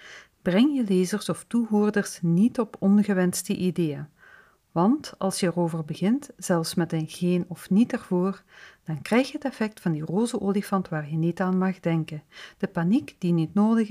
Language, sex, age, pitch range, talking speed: Dutch, female, 50-69, 170-220 Hz, 175 wpm